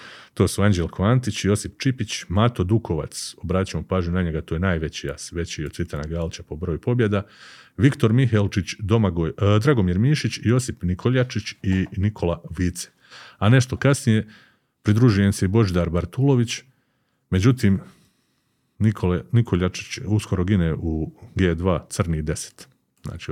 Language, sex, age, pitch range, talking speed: Croatian, male, 40-59, 90-115 Hz, 130 wpm